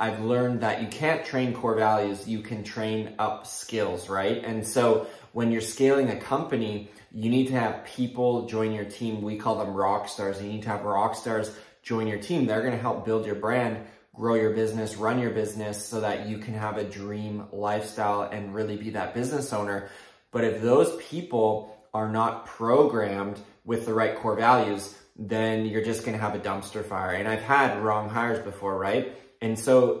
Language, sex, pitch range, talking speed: English, male, 105-120 Hz, 195 wpm